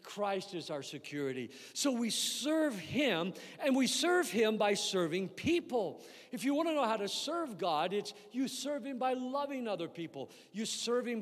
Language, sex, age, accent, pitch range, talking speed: English, male, 50-69, American, 175-245 Hz, 180 wpm